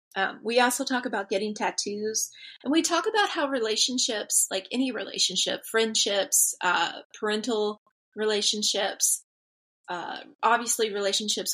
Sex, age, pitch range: female, 30-49, 205-255 Hz